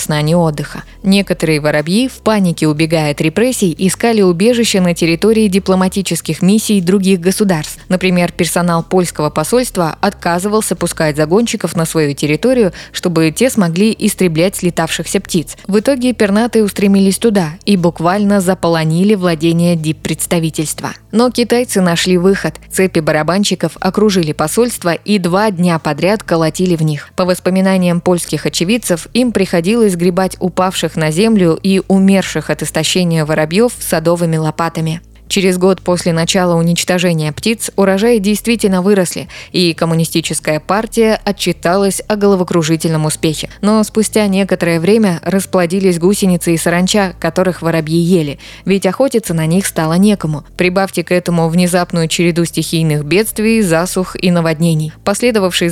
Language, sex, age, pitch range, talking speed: Russian, female, 20-39, 165-200 Hz, 130 wpm